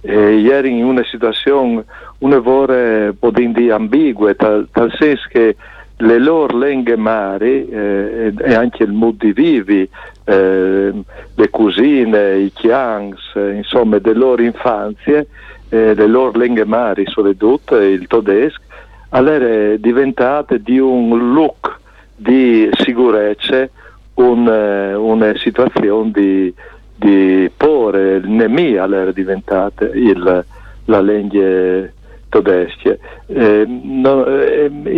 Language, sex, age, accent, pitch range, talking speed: Italian, male, 60-79, native, 100-125 Hz, 115 wpm